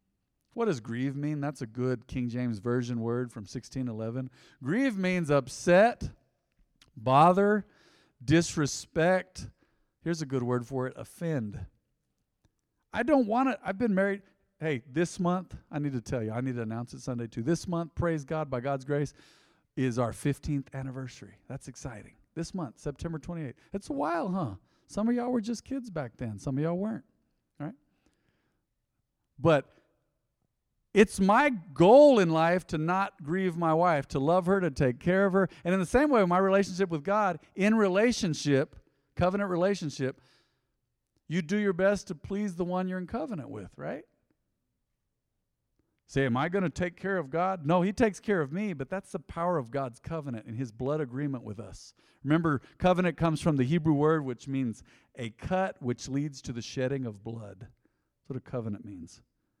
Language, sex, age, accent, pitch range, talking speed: English, male, 40-59, American, 125-185 Hz, 180 wpm